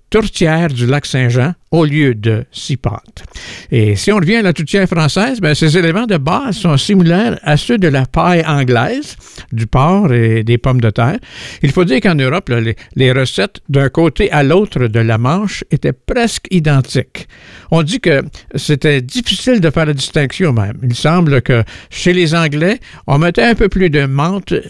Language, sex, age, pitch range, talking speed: French, male, 60-79, 125-170 Hz, 190 wpm